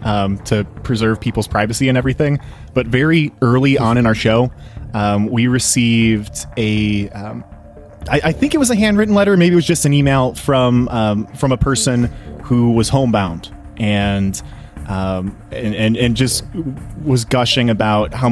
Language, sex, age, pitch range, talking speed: English, male, 20-39, 110-140 Hz, 165 wpm